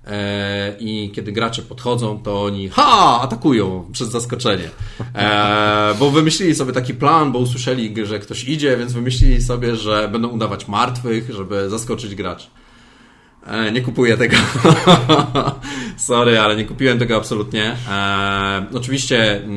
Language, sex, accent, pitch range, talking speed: Polish, male, native, 105-135 Hz, 125 wpm